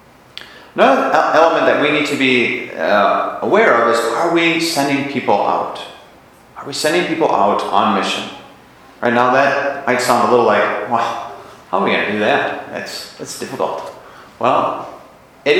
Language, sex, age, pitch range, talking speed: English, male, 30-49, 105-145 Hz, 170 wpm